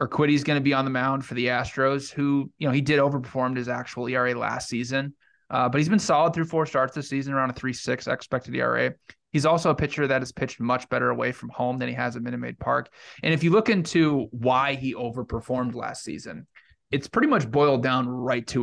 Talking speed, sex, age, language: 240 wpm, male, 20-39, English